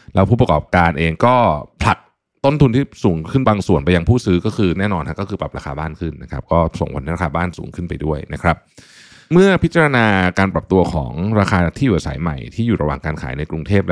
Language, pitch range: Thai, 80-105 Hz